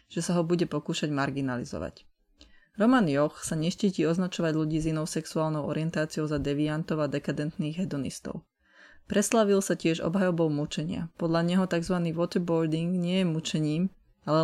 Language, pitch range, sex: Slovak, 155-180 Hz, female